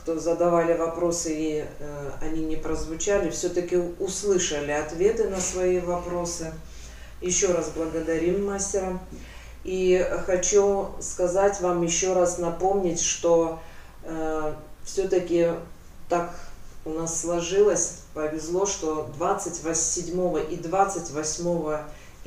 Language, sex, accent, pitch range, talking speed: Russian, female, native, 160-180 Hz, 100 wpm